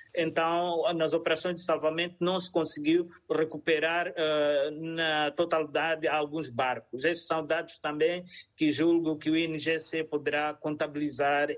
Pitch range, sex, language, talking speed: 160-205 Hz, male, Portuguese, 125 wpm